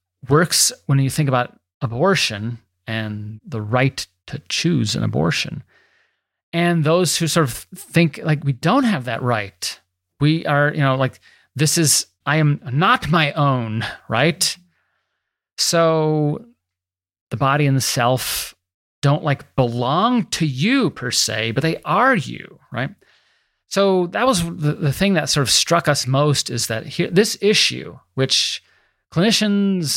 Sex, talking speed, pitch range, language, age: male, 150 wpm, 115-165 Hz, English, 30-49